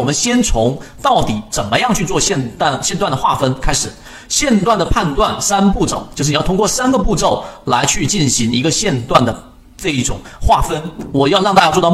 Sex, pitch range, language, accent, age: male, 120-170 Hz, Chinese, native, 40-59